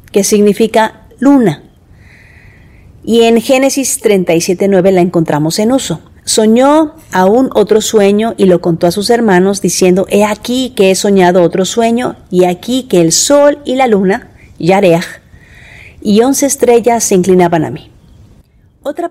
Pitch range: 180-235 Hz